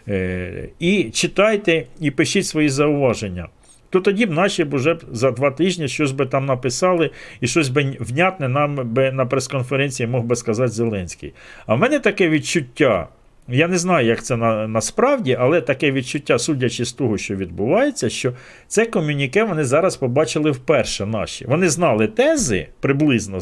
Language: Ukrainian